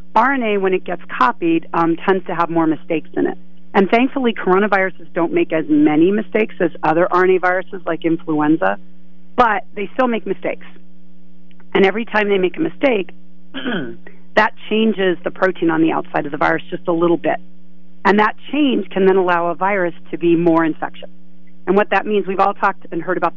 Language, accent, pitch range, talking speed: English, American, 155-195 Hz, 195 wpm